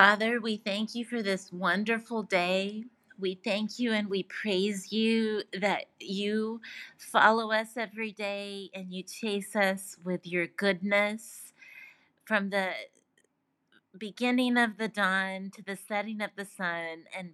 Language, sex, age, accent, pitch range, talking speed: English, female, 30-49, American, 180-215 Hz, 140 wpm